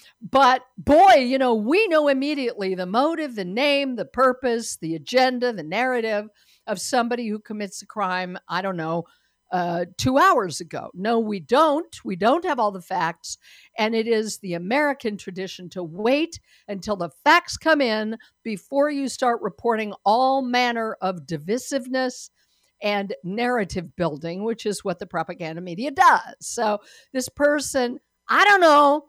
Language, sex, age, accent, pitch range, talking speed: English, female, 50-69, American, 195-265 Hz, 155 wpm